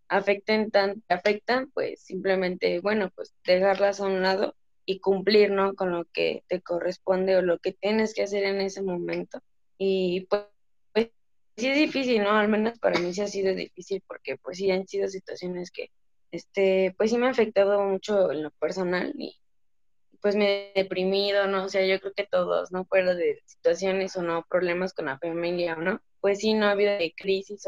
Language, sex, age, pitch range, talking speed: Spanish, female, 20-39, 185-205 Hz, 195 wpm